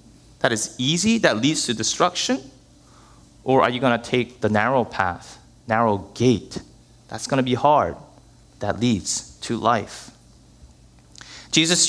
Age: 30-49